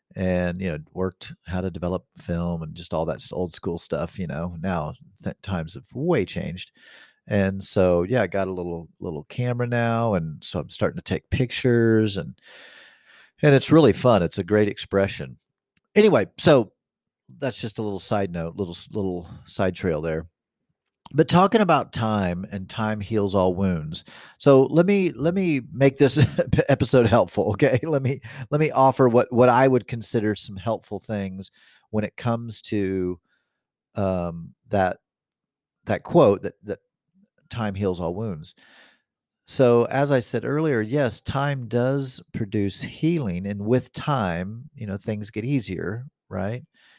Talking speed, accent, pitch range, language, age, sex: 160 wpm, American, 95-130 Hz, English, 40-59, male